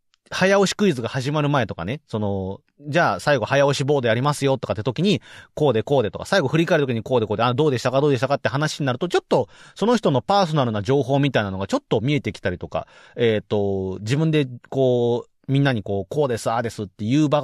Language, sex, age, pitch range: Japanese, male, 30-49, 110-160 Hz